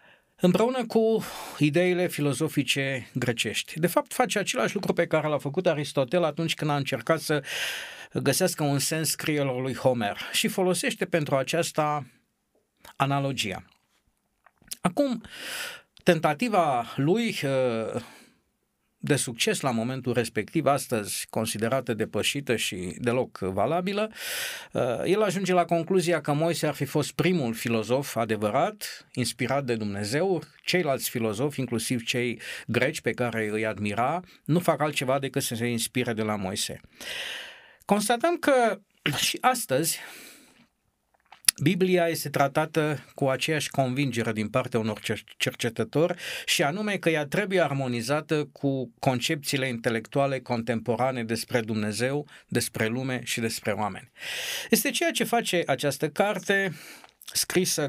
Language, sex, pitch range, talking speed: Romanian, male, 120-175 Hz, 120 wpm